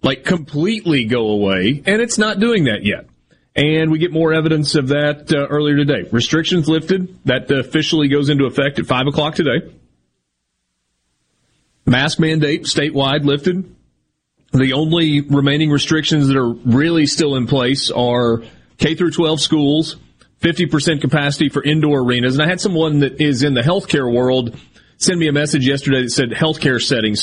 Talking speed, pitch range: 165 wpm, 120-155 Hz